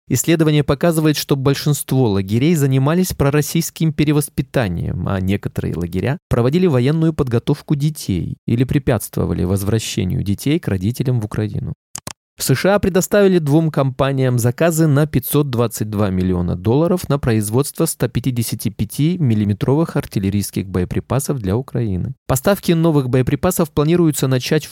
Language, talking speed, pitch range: Russian, 110 wpm, 110-155 Hz